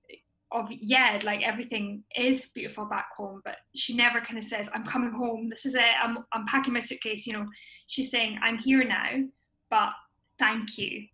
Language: English